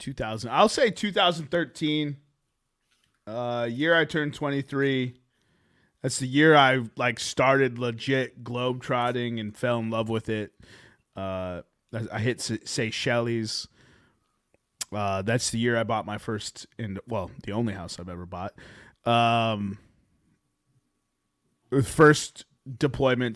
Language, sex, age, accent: English, male, 20-39, American